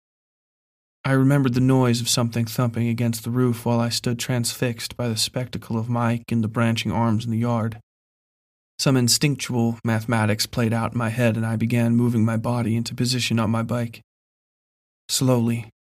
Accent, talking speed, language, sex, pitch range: American, 175 wpm, English, male, 115-125 Hz